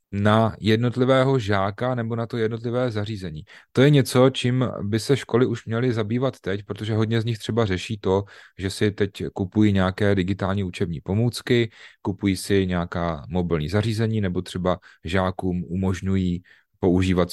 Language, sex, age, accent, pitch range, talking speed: Czech, male, 30-49, native, 90-120 Hz, 150 wpm